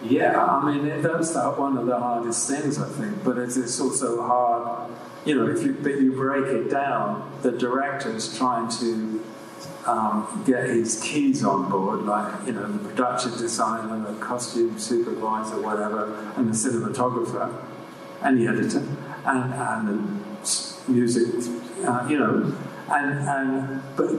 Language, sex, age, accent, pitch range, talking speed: English, male, 50-69, British, 115-135 Hz, 155 wpm